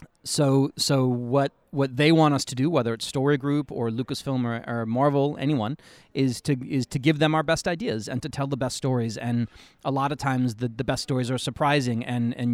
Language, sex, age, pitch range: French, male, 30-49, 120-140 Hz